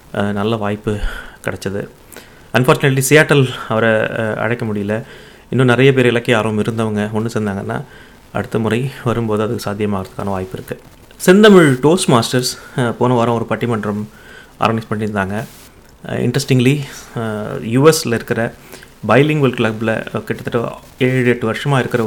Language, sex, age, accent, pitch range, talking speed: Tamil, male, 30-49, native, 115-140 Hz, 115 wpm